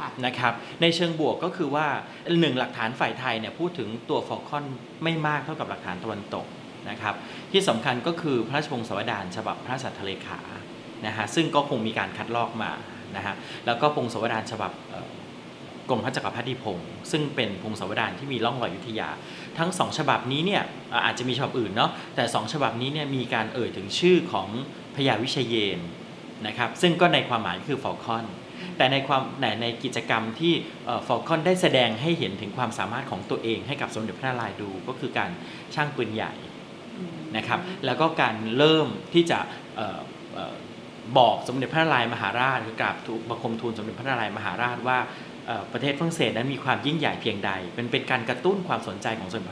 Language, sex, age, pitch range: Thai, male, 30-49, 115-150 Hz